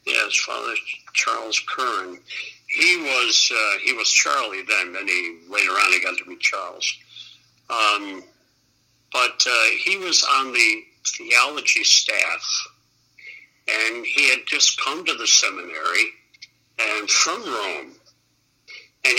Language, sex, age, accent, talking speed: English, male, 60-79, American, 130 wpm